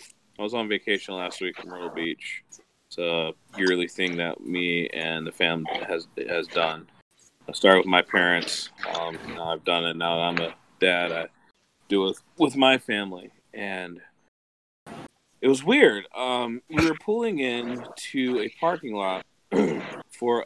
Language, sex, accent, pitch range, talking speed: English, male, American, 90-125 Hz, 165 wpm